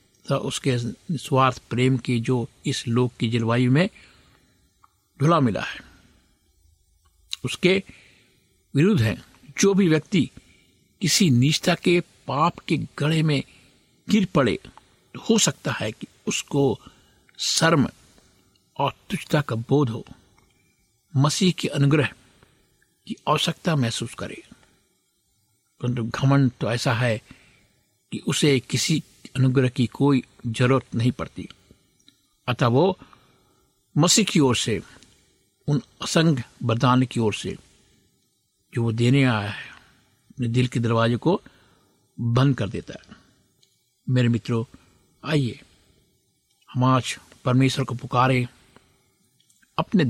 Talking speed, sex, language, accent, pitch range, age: 120 wpm, male, Hindi, native, 115-145 Hz, 60-79